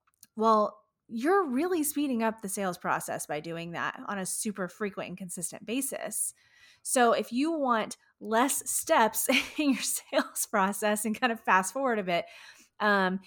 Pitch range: 200-255 Hz